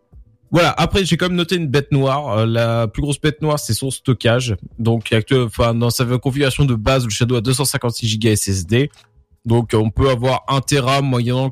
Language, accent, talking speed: French, French, 200 wpm